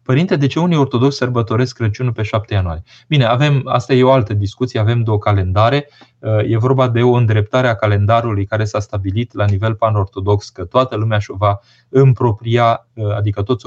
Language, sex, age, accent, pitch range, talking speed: Romanian, male, 20-39, native, 105-125 Hz, 180 wpm